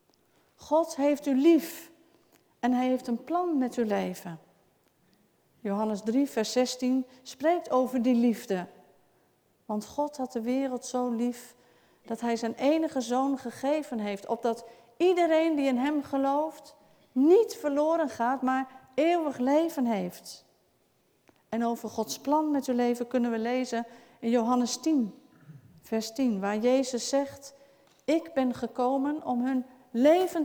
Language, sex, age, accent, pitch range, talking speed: Dutch, female, 50-69, Dutch, 230-290 Hz, 140 wpm